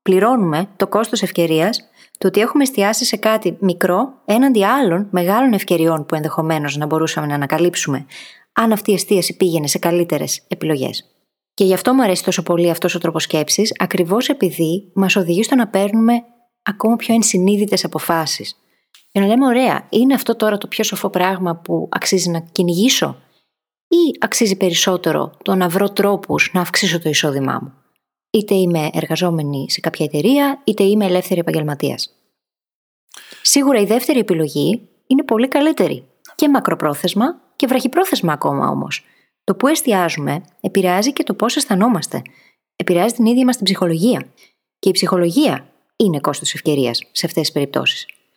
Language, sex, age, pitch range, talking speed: Greek, female, 20-39, 170-235 Hz, 150 wpm